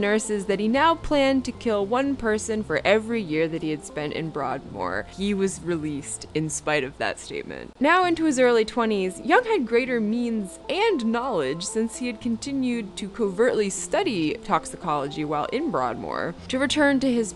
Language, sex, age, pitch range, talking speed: English, female, 20-39, 170-250 Hz, 180 wpm